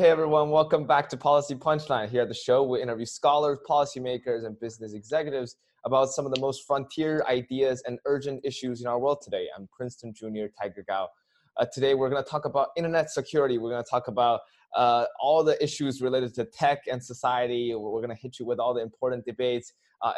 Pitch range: 115-140 Hz